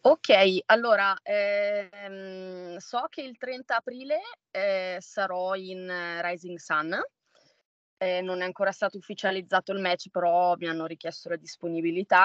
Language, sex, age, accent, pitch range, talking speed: Italian, female, 20-39, native, 170-205 Hz, 130 wpm